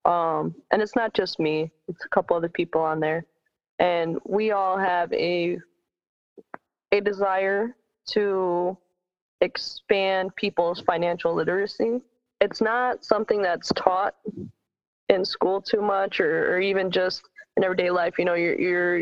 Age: 20-39